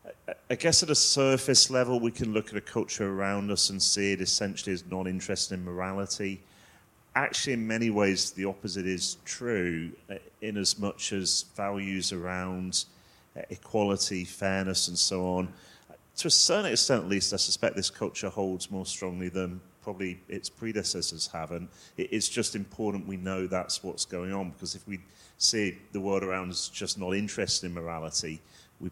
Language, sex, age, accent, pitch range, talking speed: English, male, 30-49, British, 90-105 Hz, 170 wpm